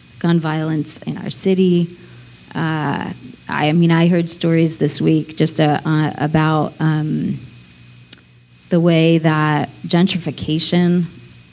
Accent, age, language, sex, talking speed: American, 30-49, English, female, 115 wpm